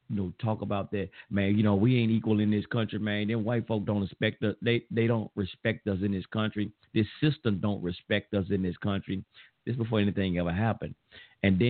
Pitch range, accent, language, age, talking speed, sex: 100-150 Hz, American, English, 40-59, 225 wpm, male